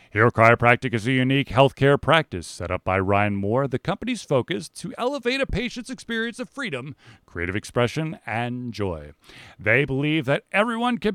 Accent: American